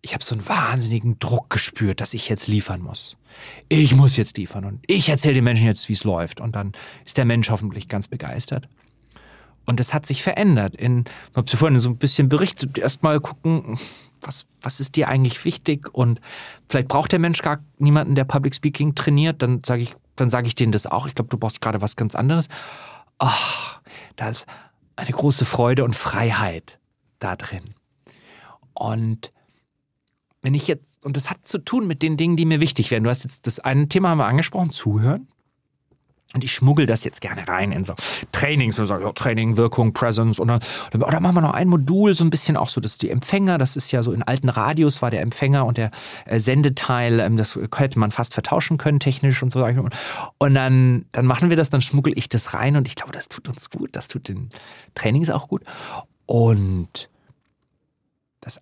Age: 40-59